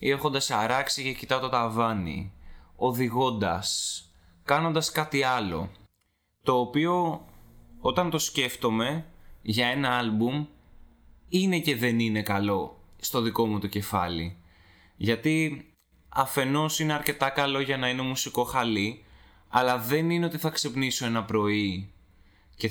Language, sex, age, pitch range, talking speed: Greek, male, 20-39, 95-145 Hz, 125 wpm